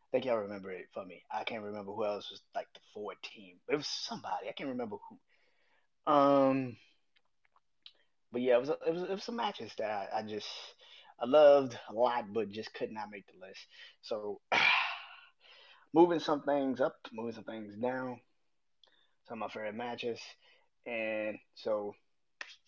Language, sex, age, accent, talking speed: English, male, 20-39, American, 185 wpm